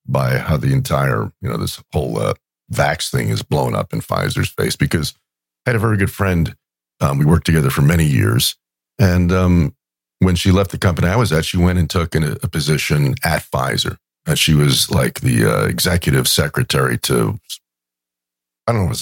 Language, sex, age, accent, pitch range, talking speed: English, male, 50-69, American, 80-105 Hz, 200 wpm